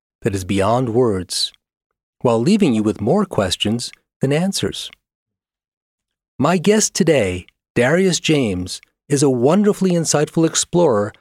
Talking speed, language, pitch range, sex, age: 120 wpm, English, 110-160 Hz, male, 40-59